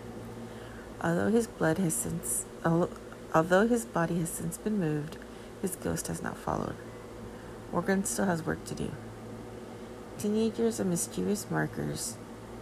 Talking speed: 130 wpm